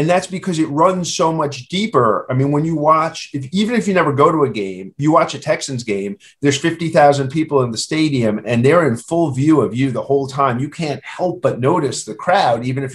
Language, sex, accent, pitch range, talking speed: English, male, American, 130-165 Hz, 235 wpm